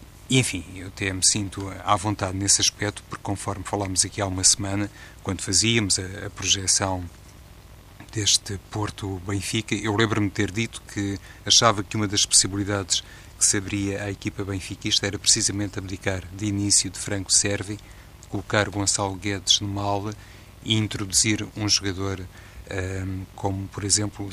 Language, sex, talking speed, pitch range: Portuguese, male, 150 wpm, 95-105 Hz